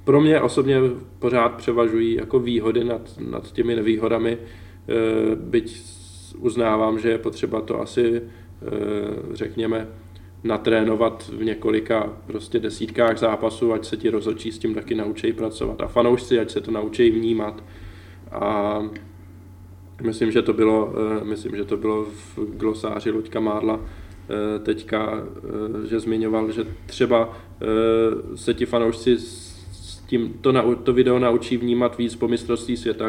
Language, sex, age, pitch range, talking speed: Czech, male, 20-39, 105-115 Hz, 145 wpm